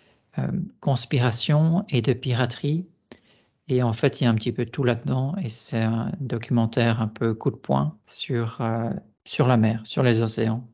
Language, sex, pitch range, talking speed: French, male, 115-130 Hz, 185 wpm